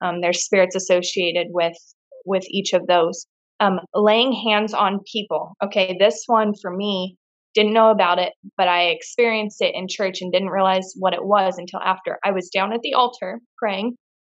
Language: English